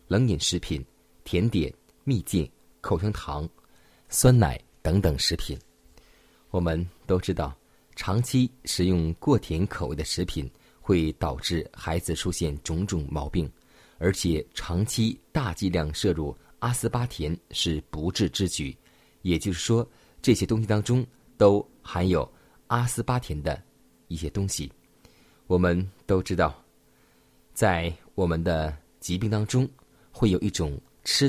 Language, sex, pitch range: Chinese, male, 80-105 Hz